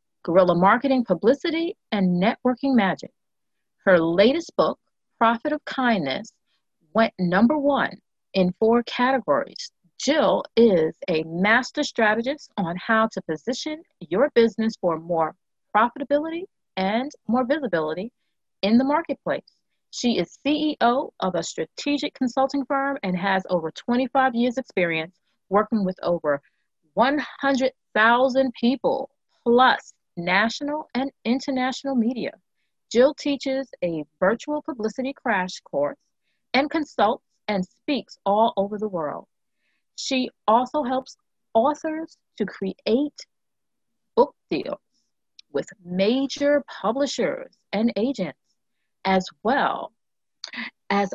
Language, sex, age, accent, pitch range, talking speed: English, female, 30-49, American, 195-275 Hz, 110 wpm